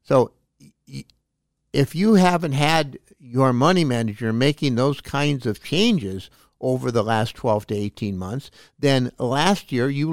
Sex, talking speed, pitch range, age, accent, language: male, 140 wpm, 120-155 Hz, 60-79, American, English